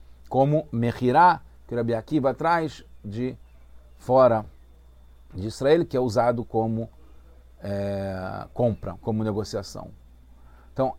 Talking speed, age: 100 wpm, 40-59